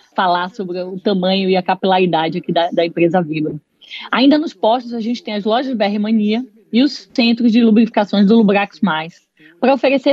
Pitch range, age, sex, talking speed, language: 190-235 Hz, 20-39, female, 190 wpm, Portuguese